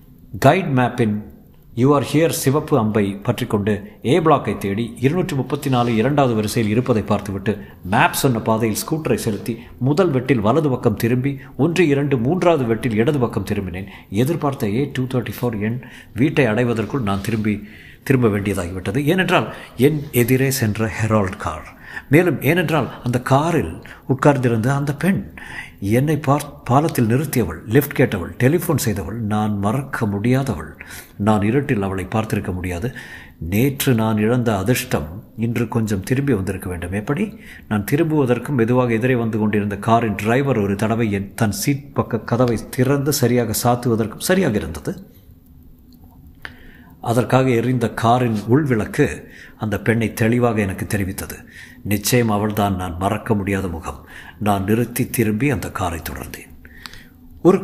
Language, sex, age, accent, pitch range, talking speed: Tamil, male, 50-69, native, 105-135 Hz, 130 wpm